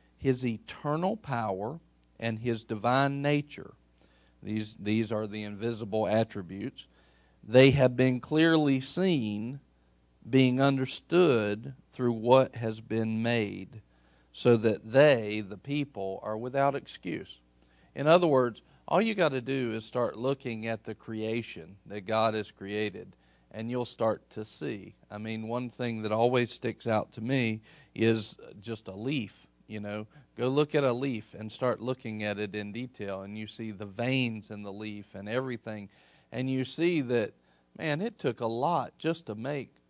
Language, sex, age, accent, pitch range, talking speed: English, male, 50-69, American, 105-135 Hz, 160 wpm